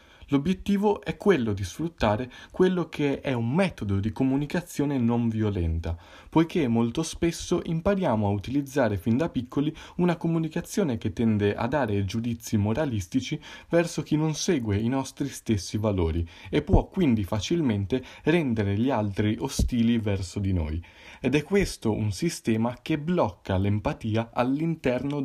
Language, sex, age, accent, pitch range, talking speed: Italian, male, 20-39, native, 100-150 Hz, 140 wpm